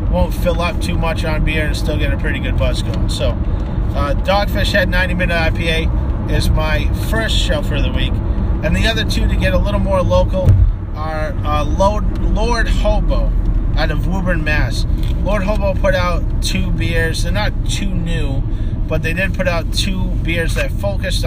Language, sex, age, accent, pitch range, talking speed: English, male, 30-49, American, 90-145 Hz, 190 wpm